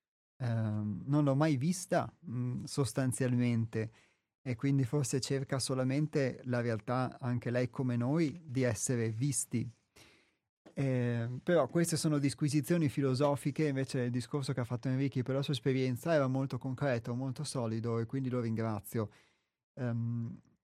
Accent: native